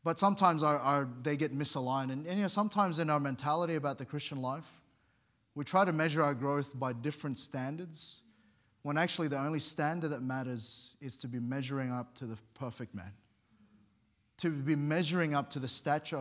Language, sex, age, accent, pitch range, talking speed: English, male, 20-39, Australian, 130-165 Hz, 175 wpm